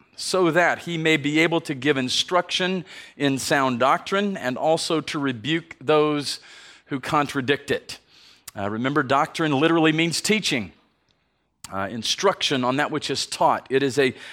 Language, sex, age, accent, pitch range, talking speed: English, male, 40-59, American, 125-155 Hz, 150 wpm